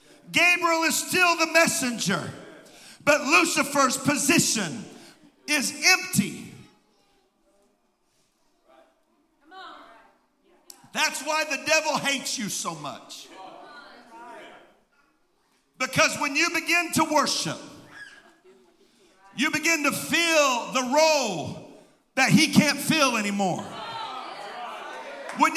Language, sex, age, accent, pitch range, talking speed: English, male, 50-69, American, 270-335 Hz, 85 wpm